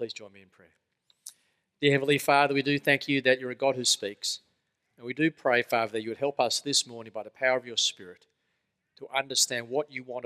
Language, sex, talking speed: English, male, 240 wpm